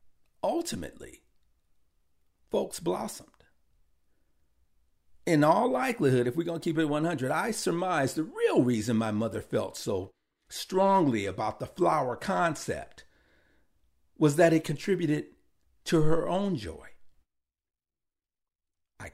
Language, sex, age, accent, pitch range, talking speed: English, male, 50-69, American, 110-175 Hz, 115 wpm